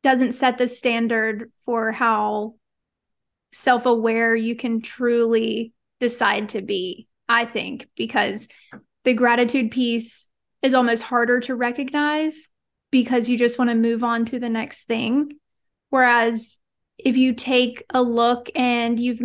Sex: female